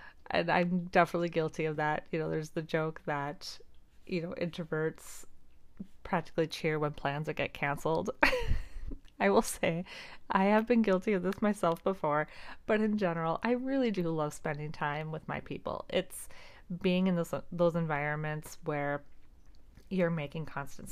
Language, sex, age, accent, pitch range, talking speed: English, female, 30-49, American, 155-195 Hz, 160 wpm